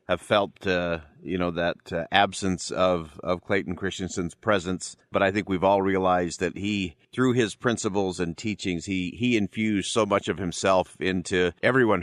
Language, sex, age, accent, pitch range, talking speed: English, male, 50-69, American, 90-110 Hz, 175 wpm